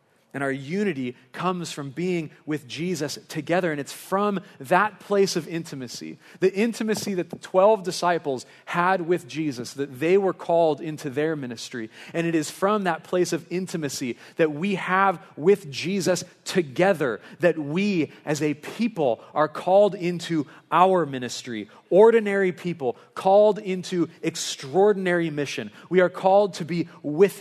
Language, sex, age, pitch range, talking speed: English, male, 30-49, 155-195 Hz, 150 wpm